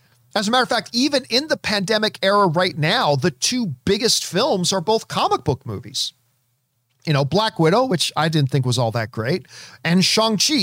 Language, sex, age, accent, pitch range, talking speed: English, male, 40-59, American, 145-210 Hz, 200 wpm